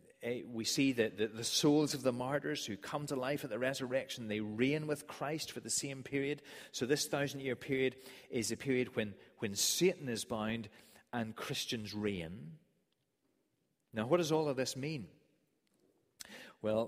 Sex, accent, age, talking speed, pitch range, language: male, British, 30-49, 165 wpm, 100-130 Hz, English